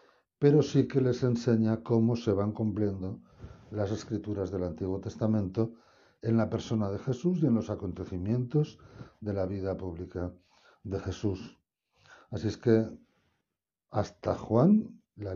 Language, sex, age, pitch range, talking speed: Spanish, male, 60-79, 95-115 Hz, 135 wpm